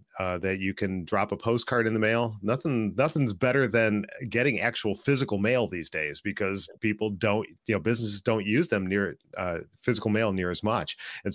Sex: male